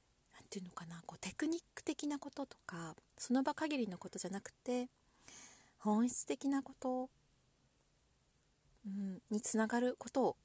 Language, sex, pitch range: Japanese, female, 170-245 Hz